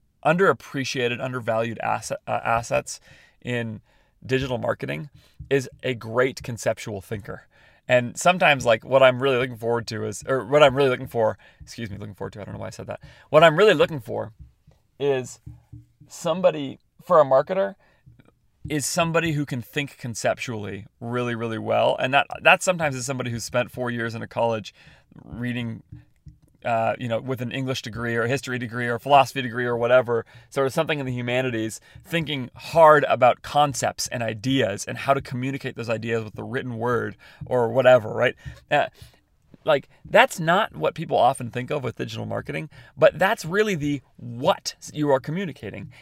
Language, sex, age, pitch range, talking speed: English, male, 30-49, 115-145 Hz, 175 wpm